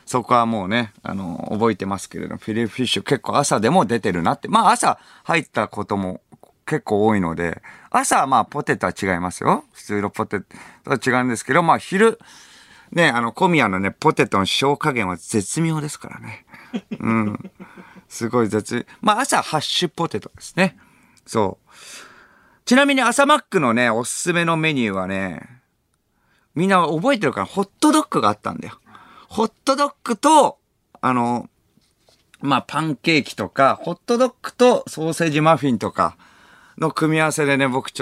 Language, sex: Japanese, male